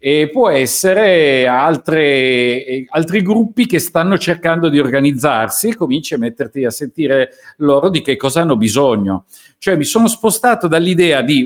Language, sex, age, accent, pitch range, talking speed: Italian, male, 50-69, native, 130-185 Hz, 150 wpm